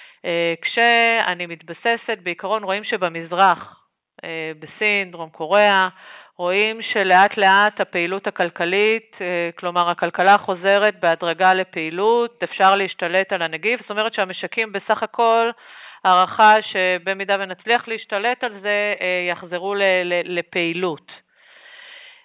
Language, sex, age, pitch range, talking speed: Hebrew, female, 40-59, 175-215 Hz, 100 wpm